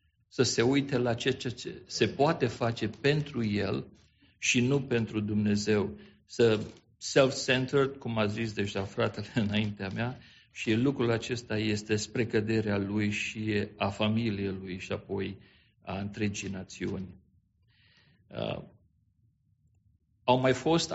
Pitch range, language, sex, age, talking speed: 105-125 Hz, English, male, 50-69, 125 wpm